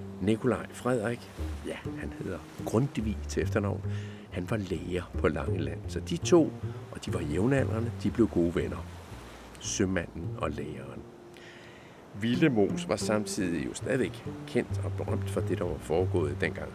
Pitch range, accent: 90-110 Hz, native